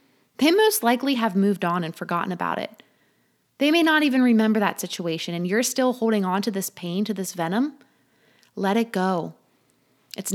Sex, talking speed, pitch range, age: female, 185 wpm, 190-245 Hz, 20-39